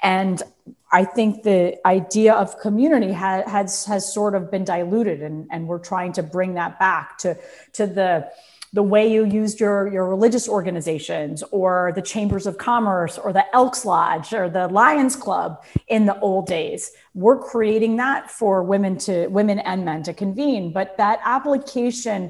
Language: English